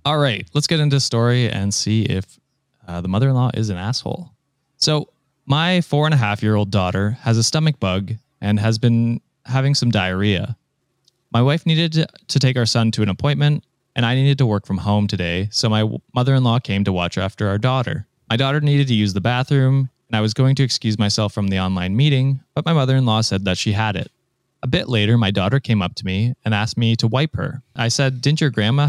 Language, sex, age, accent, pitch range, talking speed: English, male, 20-39, American, 100-135 Hz, 215 wpm